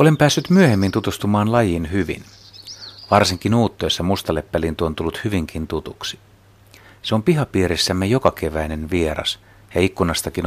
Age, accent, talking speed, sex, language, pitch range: 60-79, native, 120 wpm, male, Finnish, 85-105 Hz